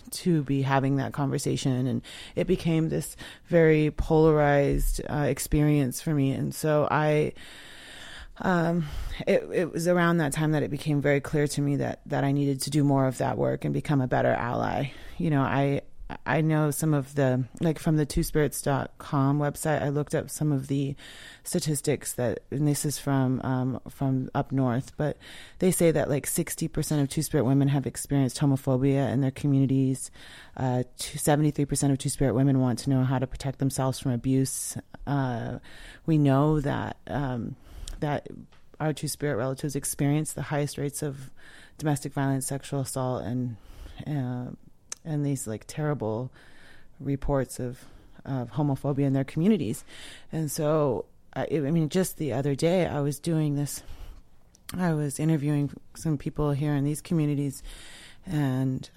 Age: 30-49